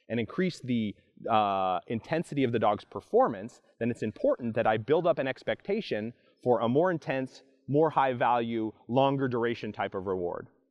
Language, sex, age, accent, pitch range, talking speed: English, male, 30-49, American, 110-140 Hz, 170 wpm